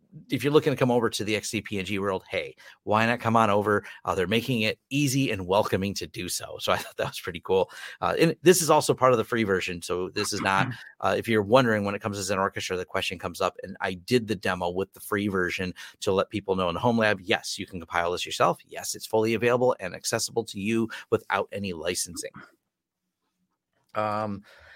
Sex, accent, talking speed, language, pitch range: male, American, 240 wpm, English, 100-135 Hz